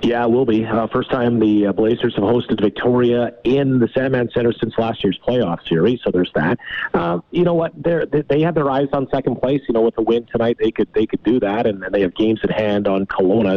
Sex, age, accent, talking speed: male, 40-59, American, 250 wpm